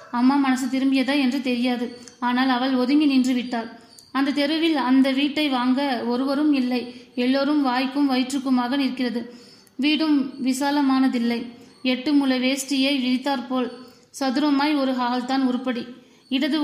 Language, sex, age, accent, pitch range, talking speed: Tamil, female, 20-39, native, 245-275 Hz, 120 wpm